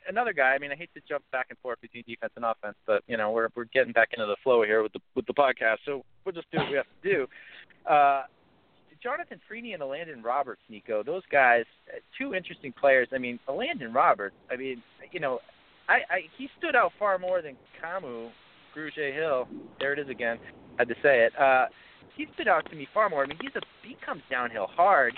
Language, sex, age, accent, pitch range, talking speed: English, male, 30-49, American, 125-195 Hz, 230 wpm